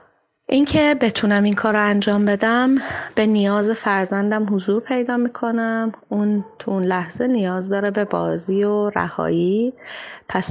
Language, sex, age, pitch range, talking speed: Persian, female, 30-49, 180-225 Hz, 130 wpm